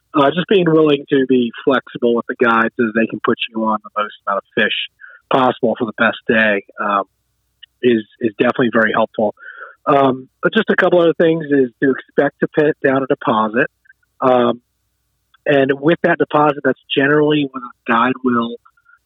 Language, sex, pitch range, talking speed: English, male, 120-155 Hz, 185 wpm